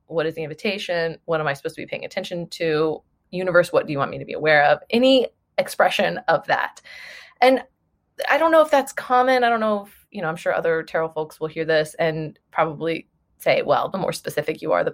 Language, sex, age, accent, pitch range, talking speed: English, female, 20-39, American, 155-205 Hz, 235 wpm